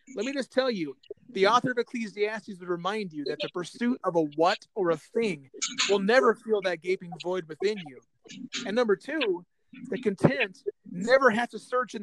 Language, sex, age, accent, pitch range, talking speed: English, male, 30-49, American, 180-235 Hz, 195 wpm